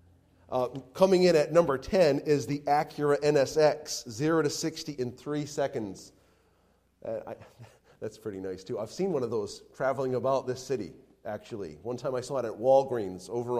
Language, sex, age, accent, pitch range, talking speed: English, male, 40-59, American, 115-155 Hz, 170 wpm